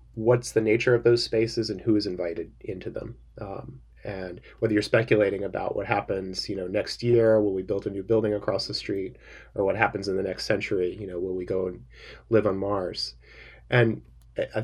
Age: 30-49